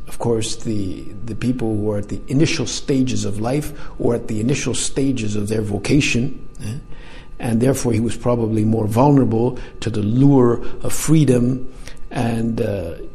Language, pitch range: English, 110-135 Hz